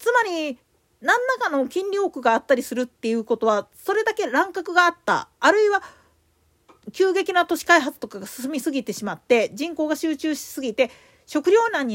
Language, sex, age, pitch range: Japanese, female, 40-59, 250-380 Hz